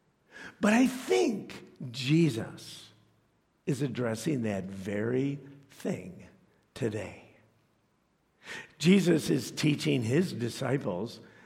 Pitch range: 120-170 Hz